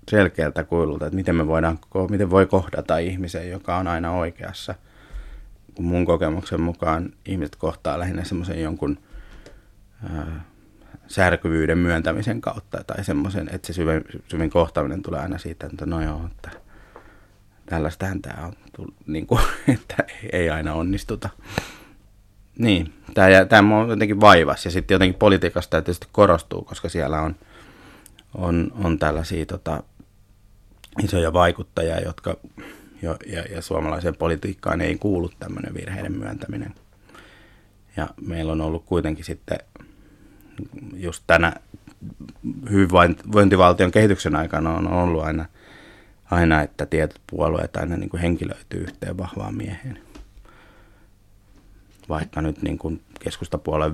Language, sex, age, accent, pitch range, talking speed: Finnish, male, 30-49, native, 80-100 Hz, 115 wpm